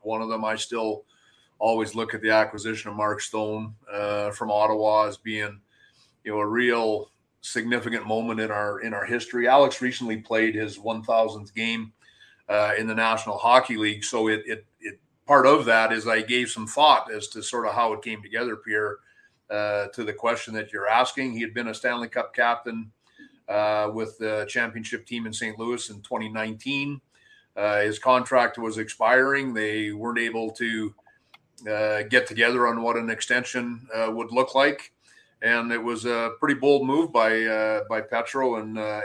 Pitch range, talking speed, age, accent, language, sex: 110-125 Hz, 185 wpm, 30-49, American, English, male